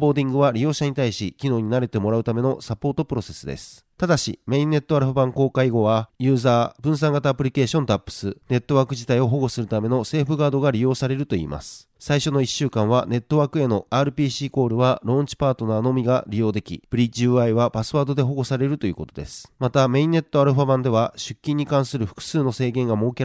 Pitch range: 115-140 Hz